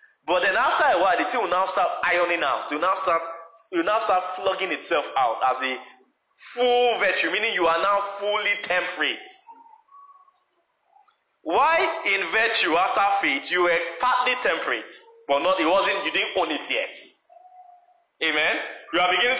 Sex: male